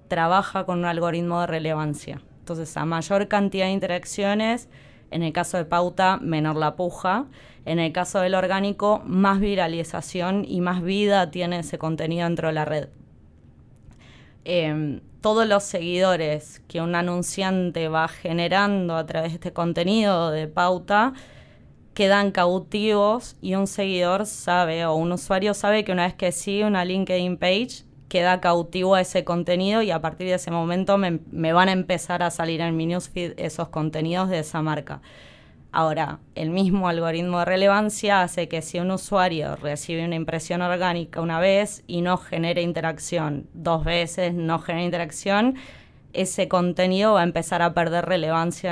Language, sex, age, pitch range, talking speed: Spanish, female, 20-39, 165-190 Hz, 160 wpm